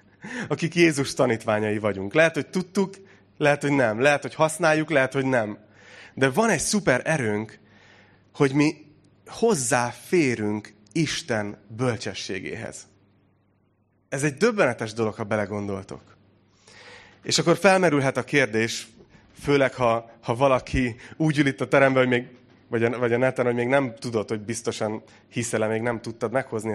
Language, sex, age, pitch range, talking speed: Hungarian, male, 30-49, 105-135 Hz, 145 wpm